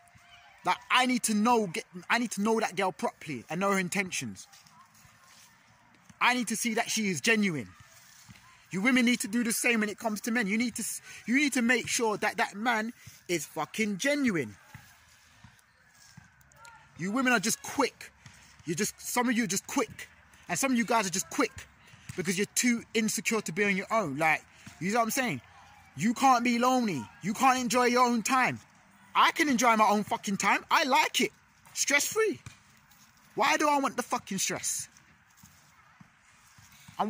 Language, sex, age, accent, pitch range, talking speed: English, male, 20-39, British, 190-240 Hz, 190 wpm